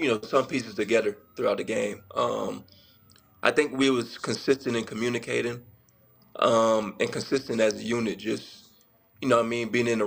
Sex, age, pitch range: male, 20-39, 105-120 Hz